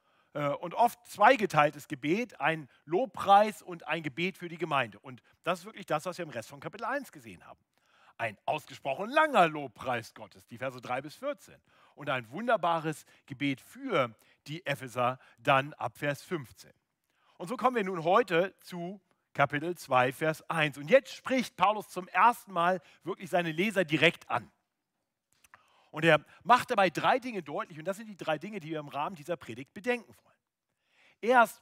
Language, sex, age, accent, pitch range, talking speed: German, male, 40-59, German, 145-200 Hz, 175 wpm